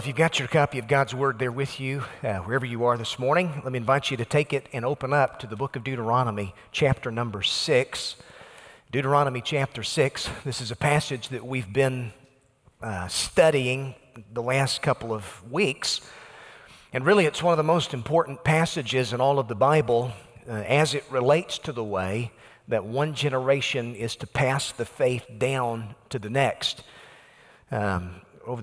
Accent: American